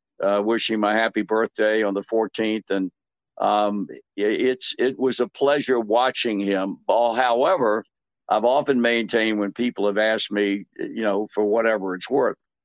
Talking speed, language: 150 wpm, English